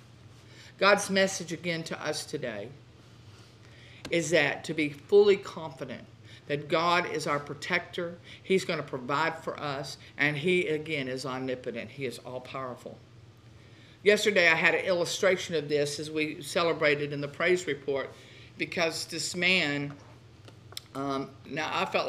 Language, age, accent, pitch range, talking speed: English, 50-69, American, 130-165 Hz, 145 wpm